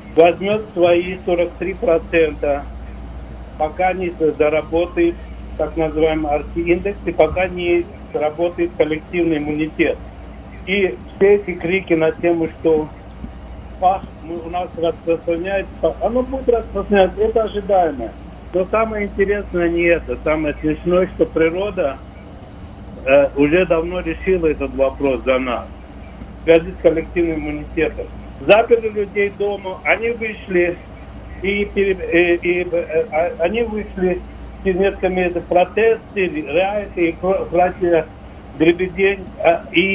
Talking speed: 110 wpm